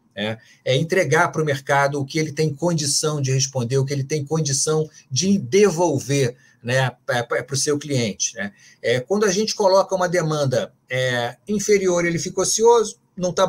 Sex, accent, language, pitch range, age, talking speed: male, Brazilian, Portuguese, 140-175 Hz, 40-59, 180 wpm